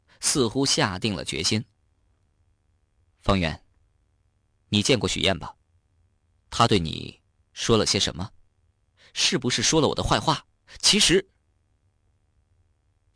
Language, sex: Chinese, male